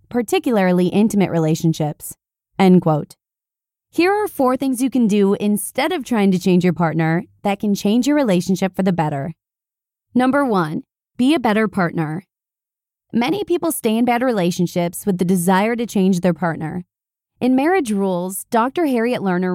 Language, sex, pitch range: English, female, 185-255 Hz